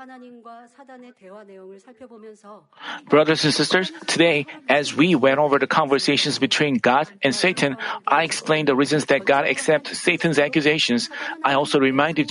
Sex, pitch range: male, 145-200 Hz